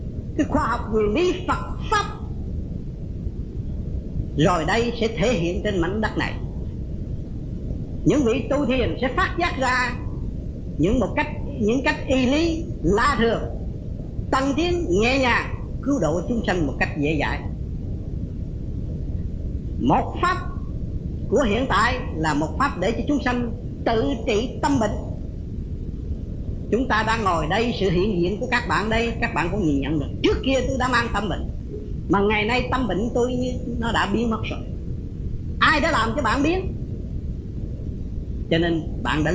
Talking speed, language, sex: 165 wpm, Vietnamese, female